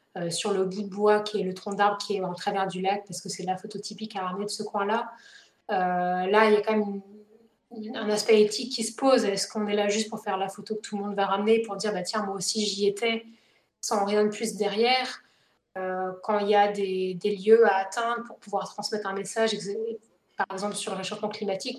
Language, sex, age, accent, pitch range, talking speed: French, female, 20-39, French, 195-220 Hz, 260 wpm